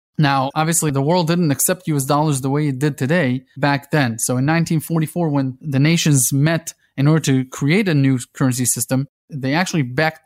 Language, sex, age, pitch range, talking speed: English, male, 20-39, 135-160 Hz, 195 wpm